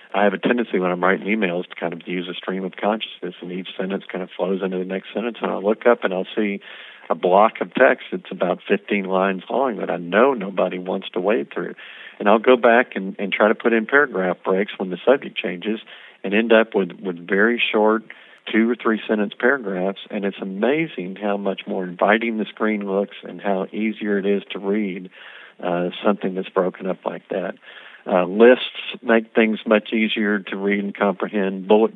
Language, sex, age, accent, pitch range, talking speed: English, male, 50-69, American, 95-110 Hz, 210 wpm